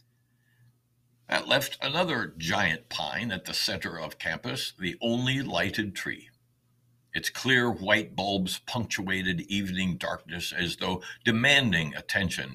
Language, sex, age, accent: English, male, 60-79, American